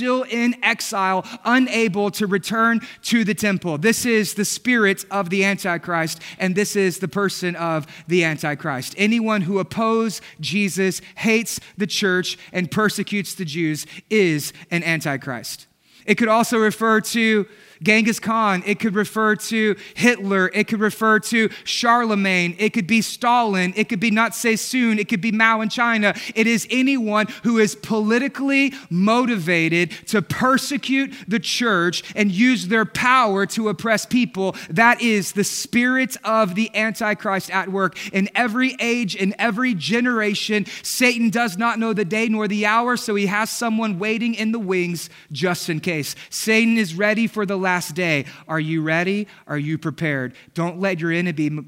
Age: 30-49